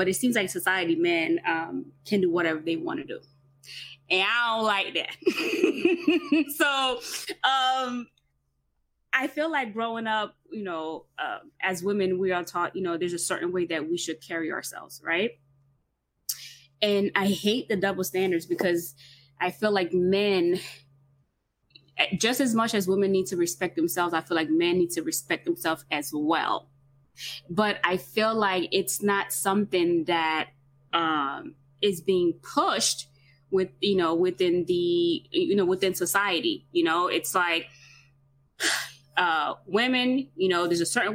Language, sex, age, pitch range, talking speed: English, female, 20-39, 160-230 Hz, 160 wpm